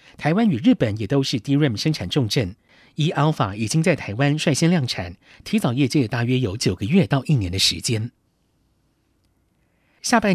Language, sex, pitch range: Chinese, male, 115-155 Hz